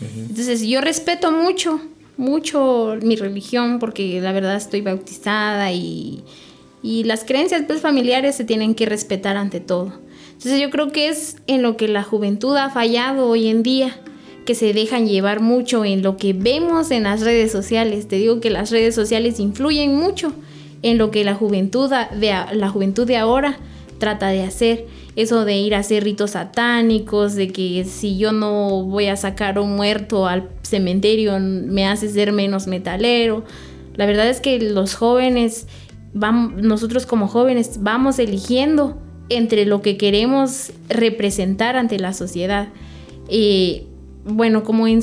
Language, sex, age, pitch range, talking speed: Spanish, female, 20-39, 200-250 Hz, 160 wpm